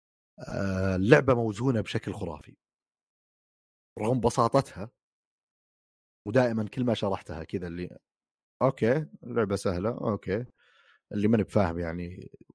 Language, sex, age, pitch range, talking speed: Arabic, male, 30-49, 90-115 Hz, 95 wpm